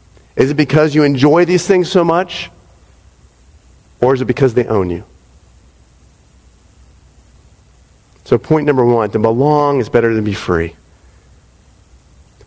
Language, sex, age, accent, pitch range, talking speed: English, male, 40-59, American, 115-160 Hz, 140 wpm